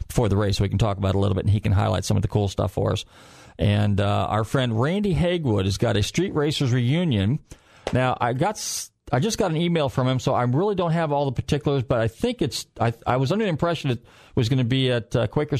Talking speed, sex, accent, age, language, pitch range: 260 wpm, male, American, 40-59, English, 110-150 Hz